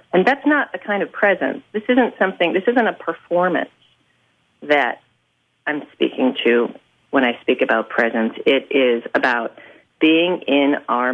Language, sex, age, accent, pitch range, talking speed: English, female, 40-59, American, 130-160 Hz, 155 wpm